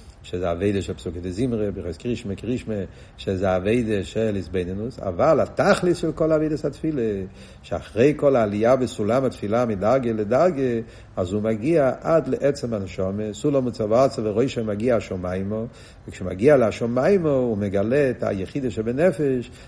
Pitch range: 115-140 Hz